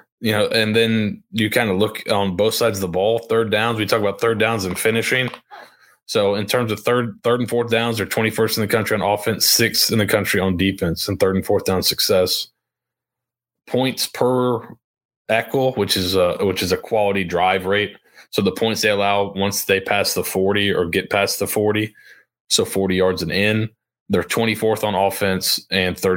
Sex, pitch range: male, 95-115 Hz